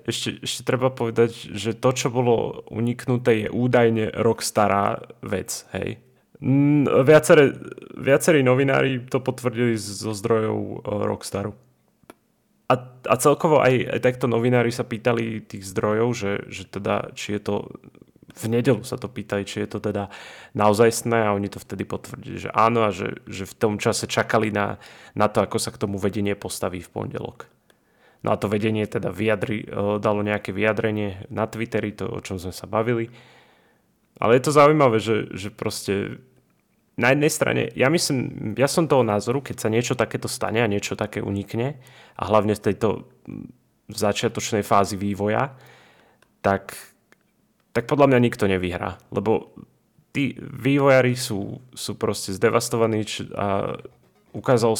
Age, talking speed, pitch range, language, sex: 20-39, 150 wpm, 105-125 Hz, Slovak, male